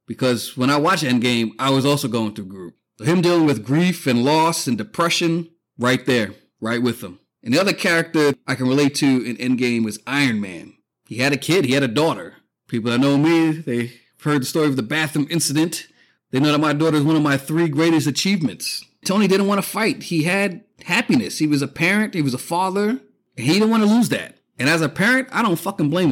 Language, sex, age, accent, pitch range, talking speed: English, male, 30-49, American, 140-185 Hz, 230 wpm